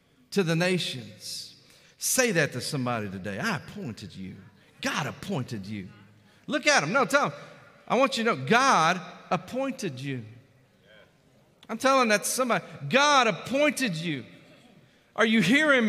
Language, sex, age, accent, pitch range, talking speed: English, male, 40-59, American, 200-285 Hz, 145 wpm